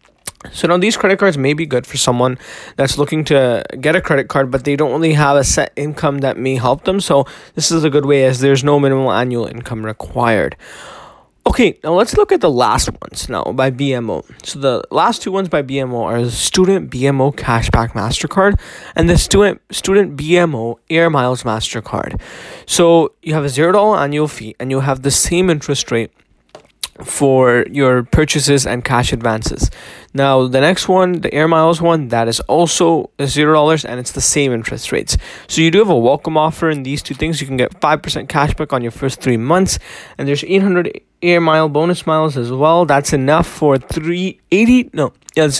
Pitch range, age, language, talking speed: 130-170 Hz, 20-39, English, 200 wpm